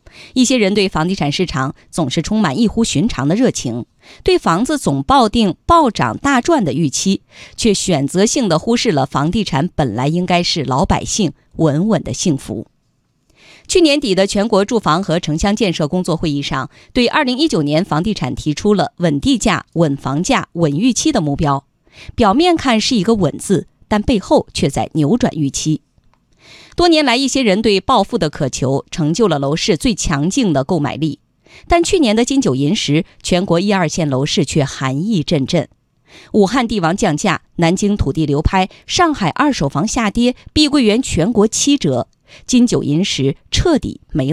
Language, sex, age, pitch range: Chinese, female, 20-39, 155-235 Hz